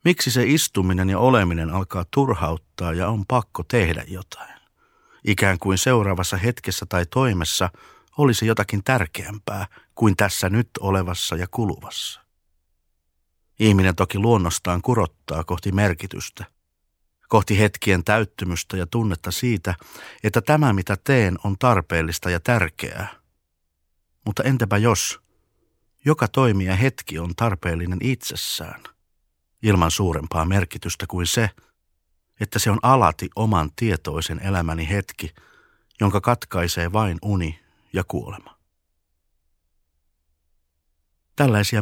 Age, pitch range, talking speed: 50-69, 85-105 Hz, 110 wpm